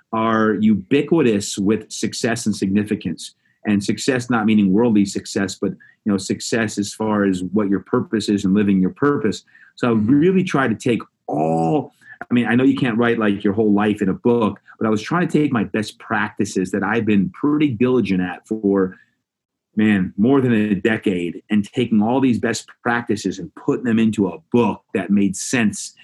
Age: 30-49